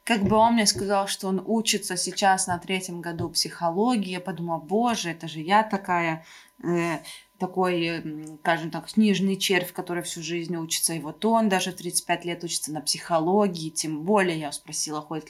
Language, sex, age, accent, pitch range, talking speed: Russian, female, 20-39, native, 170-225 Hz, 175 wpm